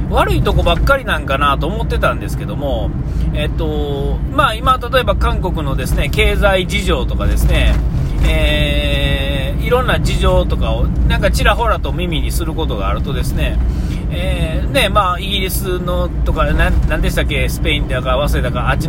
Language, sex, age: Japanese, male, 40-59